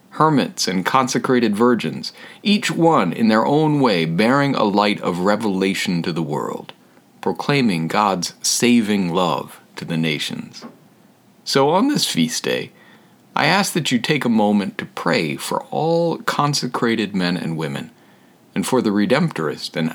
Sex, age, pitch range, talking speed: male, 40-59, 90-135 Hz, 150 wpm